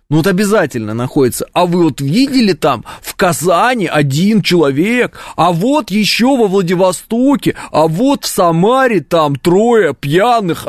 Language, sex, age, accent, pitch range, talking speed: Russian, male, 20-39, native, 140-215 Hz, 140 wpm